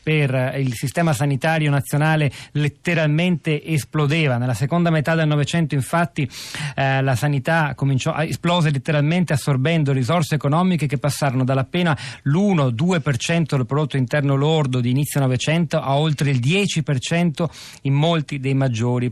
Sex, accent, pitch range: male, native, 125-160 Hz